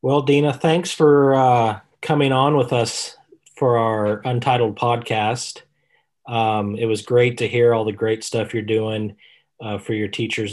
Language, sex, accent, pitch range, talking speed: English, male, American, 105-120 Hz, 165 wpm